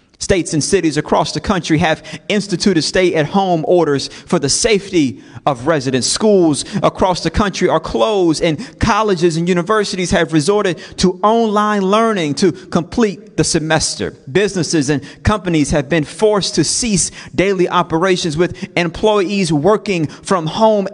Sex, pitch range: male, 165-210 Hz